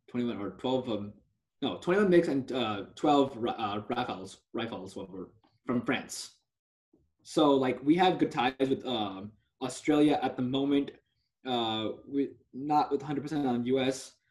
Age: 20-39